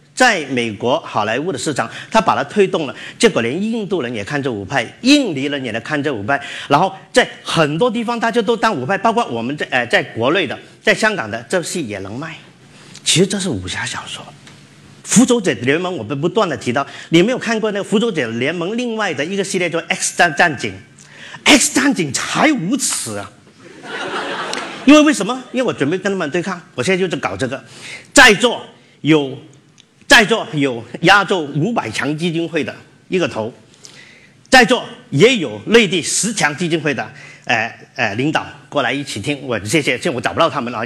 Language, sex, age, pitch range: Chinese, male, 50-69, 145-220 Hz